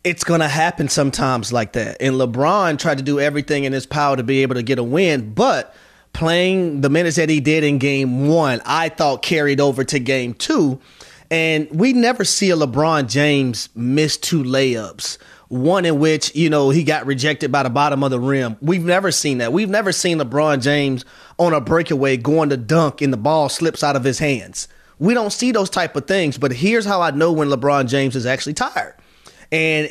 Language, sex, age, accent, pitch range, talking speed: English, male, 30-49, American, 140-180 Hz, 215 wpm